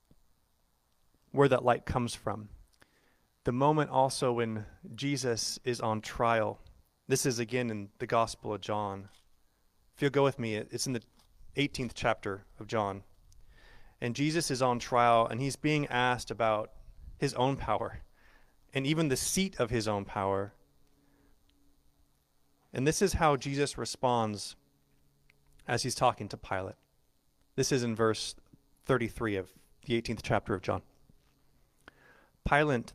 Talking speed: 140 wpm